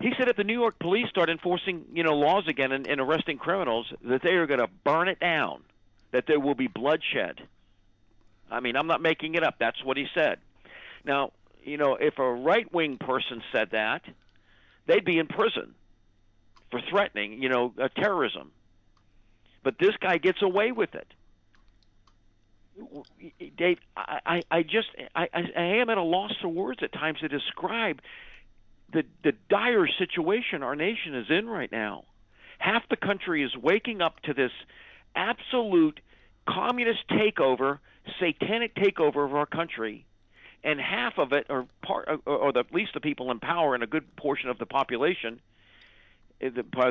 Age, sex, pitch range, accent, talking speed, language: 50-69, male, 120-180 Hz, American, 170 wpm, English